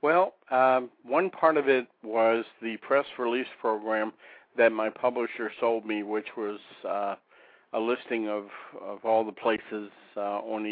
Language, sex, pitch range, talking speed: English, male, 105-120 Hz, 160 wpm